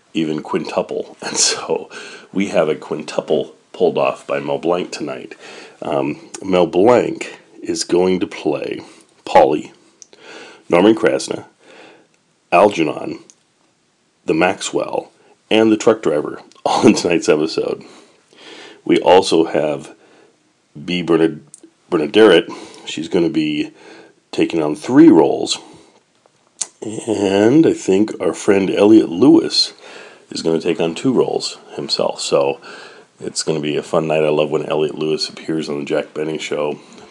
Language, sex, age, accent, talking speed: English, male, 40-59, American, 135 wpm